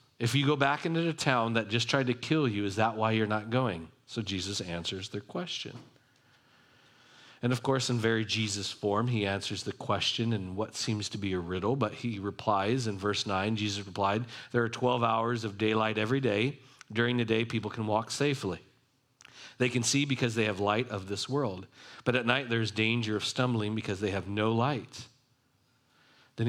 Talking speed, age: 200 wpm, 40-59